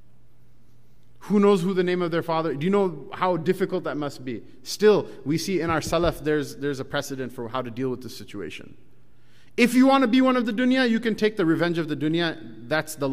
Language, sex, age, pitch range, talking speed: English, male, 30-49, 125-155 Hz, 240 wpm